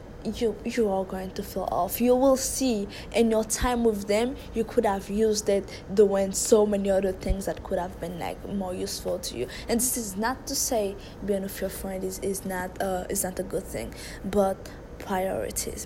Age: 20-39